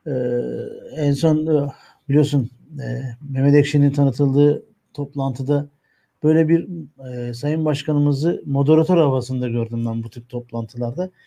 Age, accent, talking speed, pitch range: 60-79, native, 110 wpm, 140-160 Hz